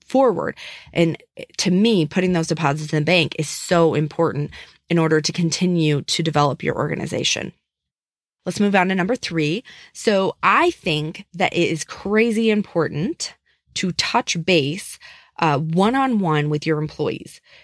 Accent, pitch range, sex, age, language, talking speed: American, 165-215 Hz, female, 20-39, English, 145 wpm